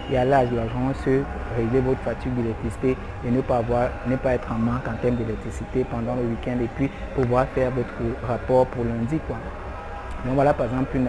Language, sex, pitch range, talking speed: French, male, 115-135 Hz, 210 wpm